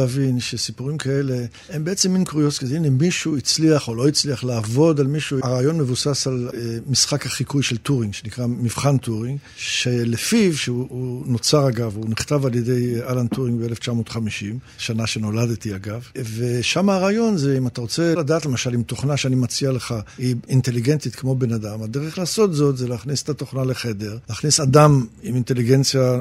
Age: 50-69